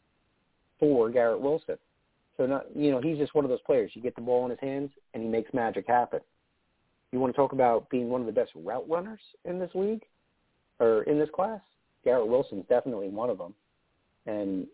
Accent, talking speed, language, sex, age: American, 210 wpm, English, male, 40-59